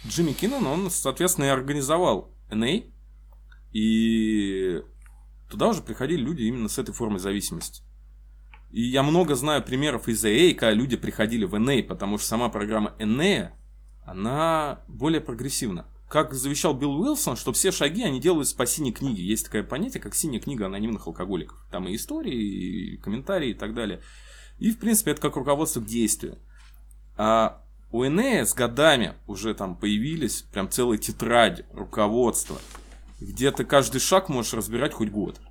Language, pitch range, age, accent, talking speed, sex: Ukrainian, 105-150 Hz, 20-39, native, 155 wpm, male